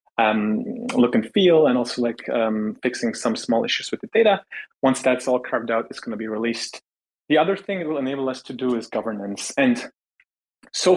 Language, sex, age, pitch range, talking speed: English, male, 30-49, 120-155 Hz, 210 wpm